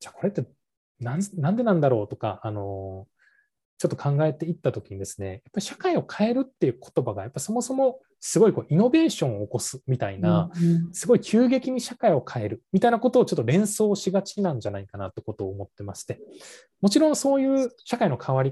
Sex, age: male, 20-39